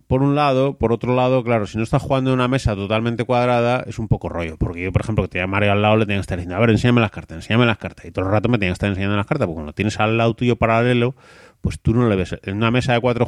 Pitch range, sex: 95-120 Hz, male